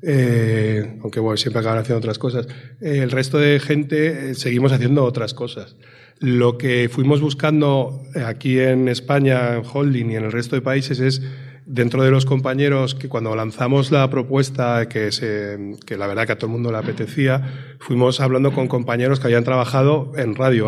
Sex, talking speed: male, 185 wpm